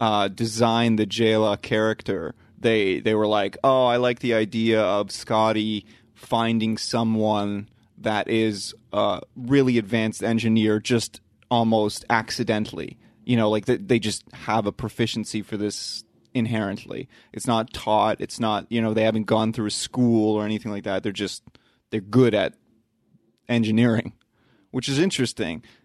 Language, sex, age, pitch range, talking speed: English, male, 30-49, 105-115 Hz, 150 wpm